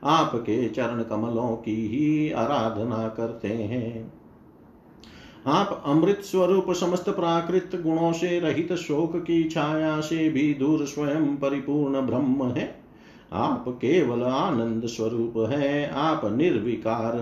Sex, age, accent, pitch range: male, 50-69, native, 115-155 Hz